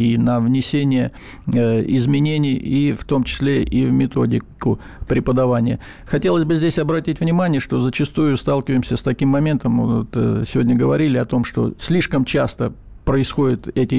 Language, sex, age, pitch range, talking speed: Russian, male, 50-69, 125-155 Hz, 150 wpm